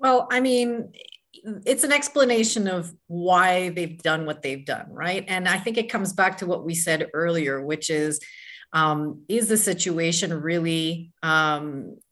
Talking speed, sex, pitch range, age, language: 165 wpm, female, 160-190 Hz, 30-49, English